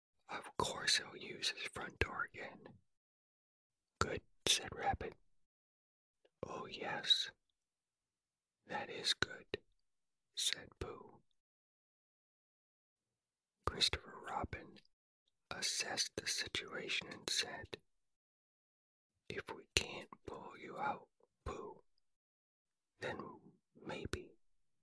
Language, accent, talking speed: English, American, 80 wpm